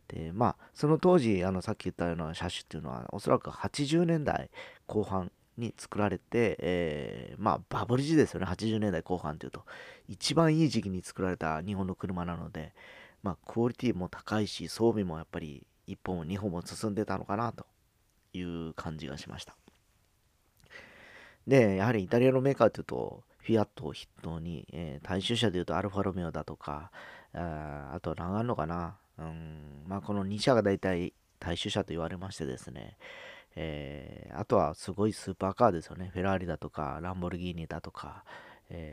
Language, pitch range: Japanese, 85-110 Hz